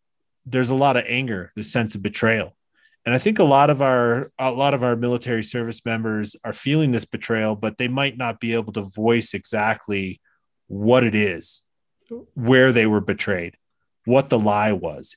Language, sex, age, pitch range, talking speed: English, male, 30-49, 105-130 Hz, 185 wpm